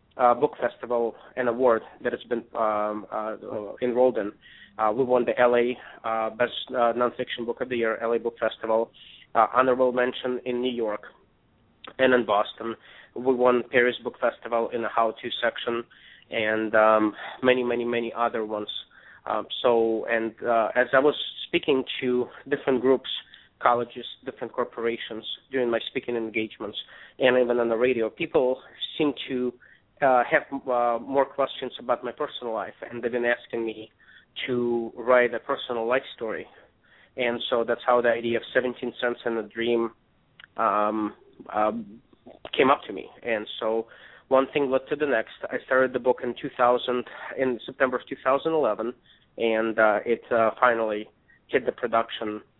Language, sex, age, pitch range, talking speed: English, male, 20-39, 115-125 Hz, 165 wpm